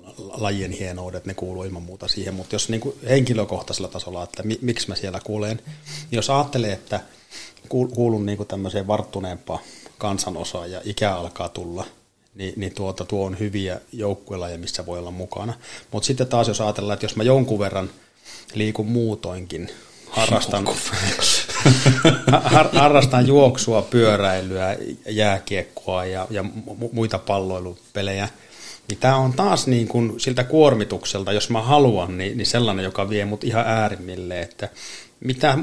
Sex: male